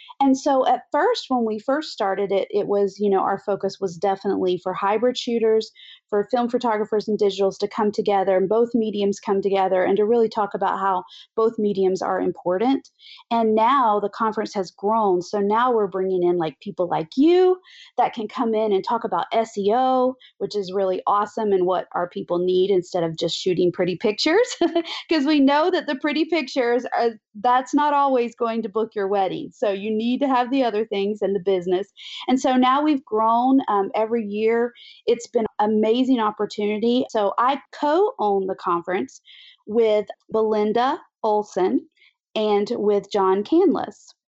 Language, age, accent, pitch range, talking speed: English, 40-59, American, 200-255 Hz, 180 wpm